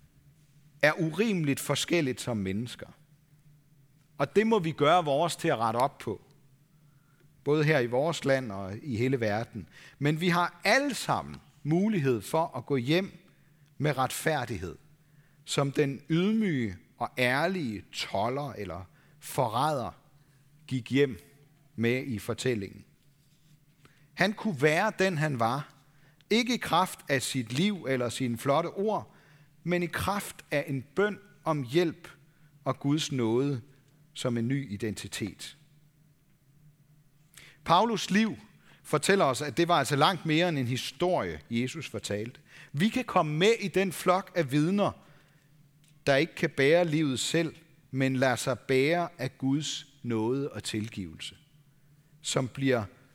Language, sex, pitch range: Danish, male, 130-160 Hz